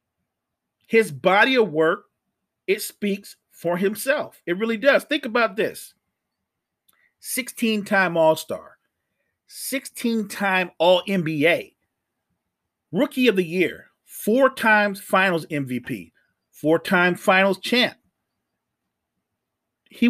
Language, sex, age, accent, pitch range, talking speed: English, male, 40-59, American, 160-205 Hz, 90 wpm